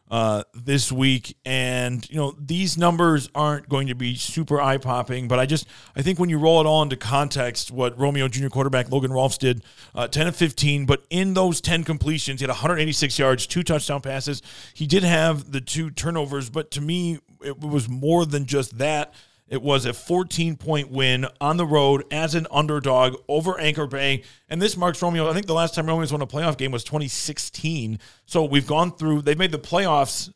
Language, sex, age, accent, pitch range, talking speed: English, male, 40-59, American, 130-155 Hz, 200 wpm